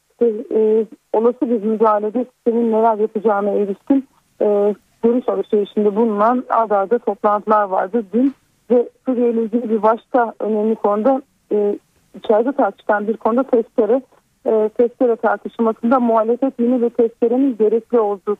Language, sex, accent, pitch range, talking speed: Turkish, female, native, 210-245 Hz, 125 wpm